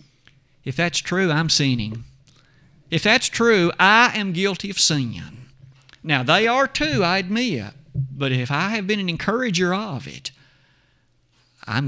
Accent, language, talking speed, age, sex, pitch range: American, English, 145 wpm, 50-69, male, 130-180 Hz